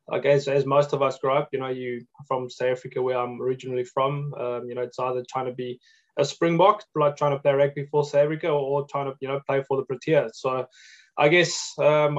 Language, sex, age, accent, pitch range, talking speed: English, male, 20-39, South African, 135-155 Hz, 240 wpm